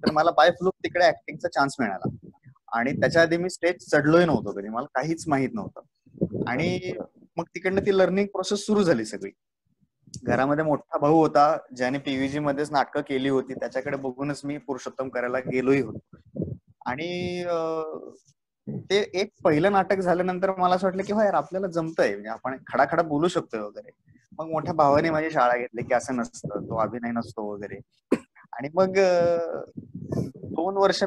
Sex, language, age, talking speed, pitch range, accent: male, Marathi, 20-39, 160 wpm, 135-180 Hz, native